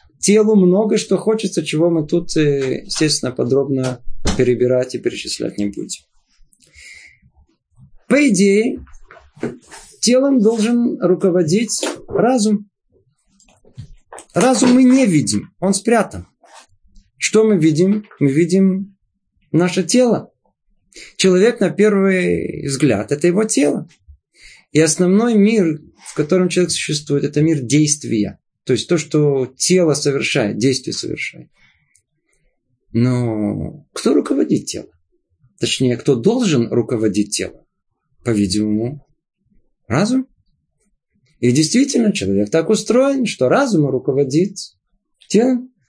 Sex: male